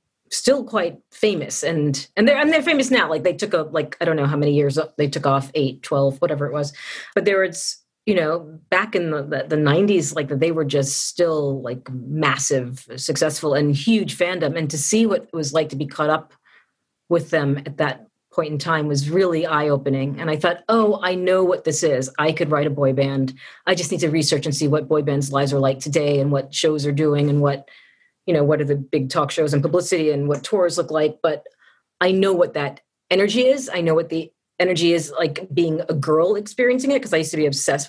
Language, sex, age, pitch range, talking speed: English, female, 40-59, 150-195 Hz, 235 wpm